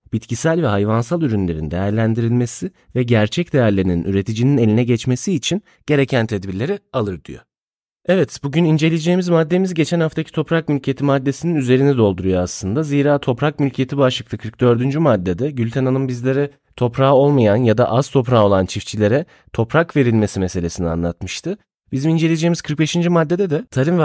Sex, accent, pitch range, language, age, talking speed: male, native, 110-155 Hz, Turkish, 30-49, 140 wpm